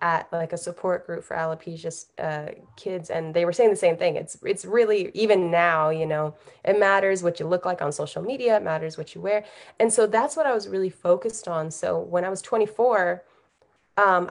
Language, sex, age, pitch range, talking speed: English, female, 20-39, 160-190 Hz, 220 wpm